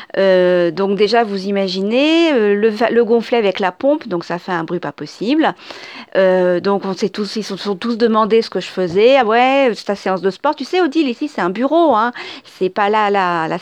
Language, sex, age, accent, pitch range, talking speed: French, female, 40-59, French, 195-260 Hz, 240 wpm